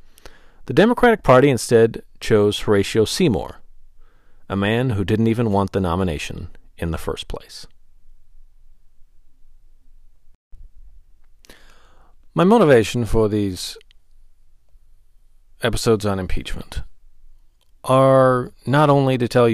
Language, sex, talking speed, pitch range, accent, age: English, male, 95 wpm, 95-115 Hz, American, 40-59